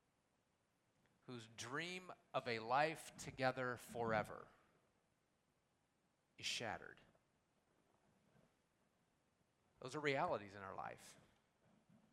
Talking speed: 75 wpm